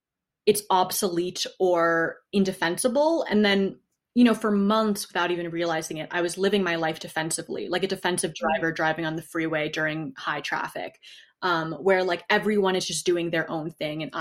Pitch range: 165-200 Hz